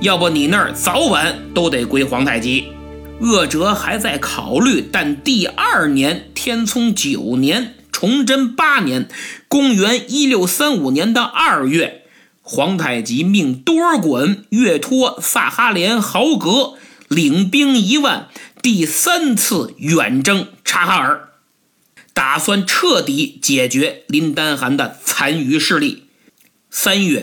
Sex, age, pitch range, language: male, 50-69, 180-270 Hz, Chinese